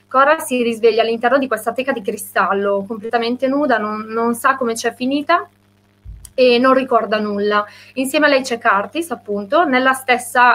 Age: 30-49